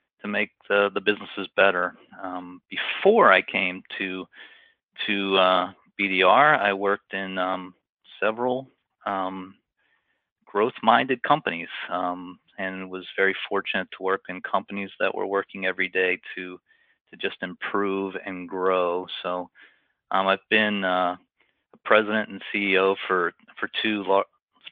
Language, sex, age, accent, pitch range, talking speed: English, male, 30-49, American, 90-100 Hz, 135 wpm